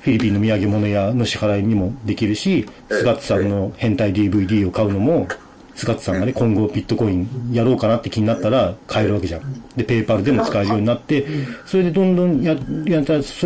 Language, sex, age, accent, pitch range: Japanese, male, 40-59, native, 105-150 Hz